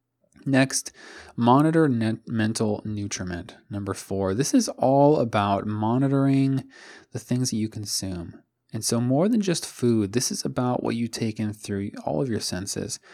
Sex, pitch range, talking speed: male, 95-120 Hz, 155 wpm